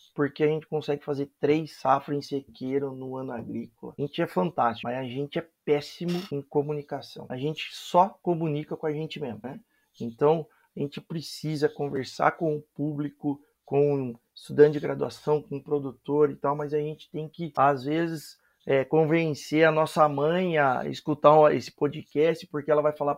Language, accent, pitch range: Portuguese, Brazilian, 140-160 Hz